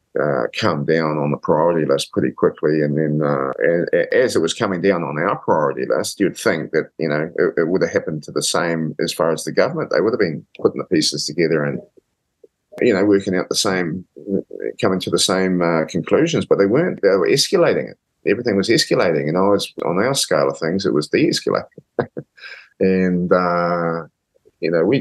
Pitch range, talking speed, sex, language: 75-95 Hz, 205 wpm, male, English